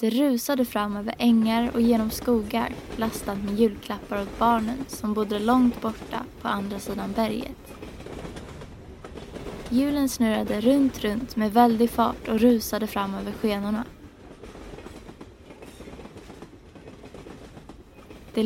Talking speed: 110 wpm